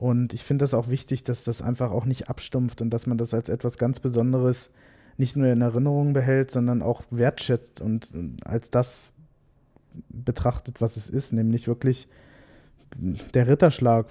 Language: German